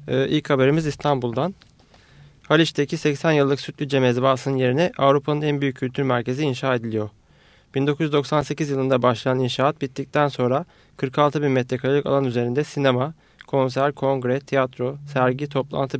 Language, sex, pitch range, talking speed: Turkish, male, 130-145 Hz, 130 wpm